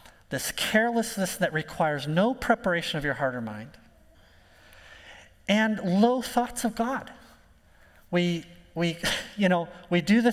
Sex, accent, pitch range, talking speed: male, American, 150-210 Hz, 135 wpm